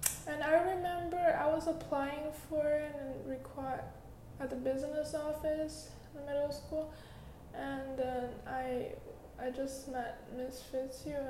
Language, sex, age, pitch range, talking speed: English, female, 10-29, 240-295 Hz, 135 wpm